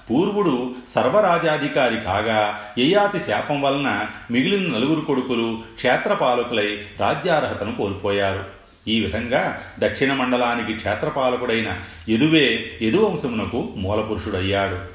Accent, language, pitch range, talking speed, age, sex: native, Telugu, 105-140 Hz, 80 wpm, 40-59, male